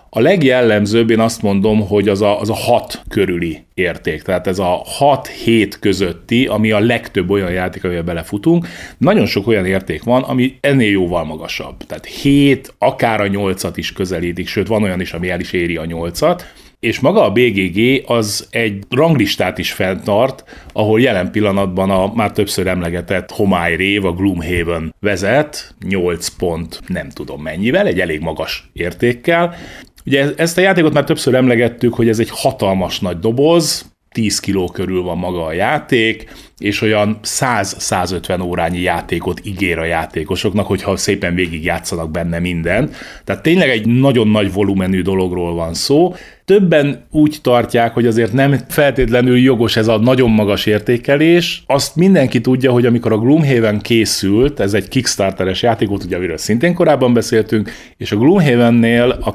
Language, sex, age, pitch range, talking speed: Hungarian, male, 30-49, 95-125 Hz, 155 wpm